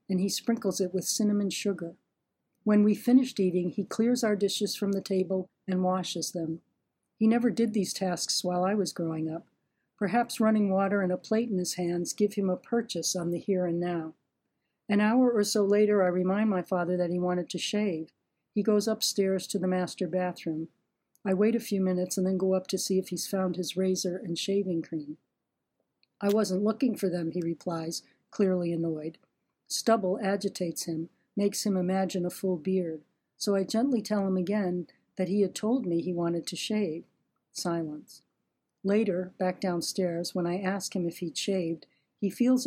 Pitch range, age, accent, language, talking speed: 175-205 Hz, 50-69, American, English, 190 wpm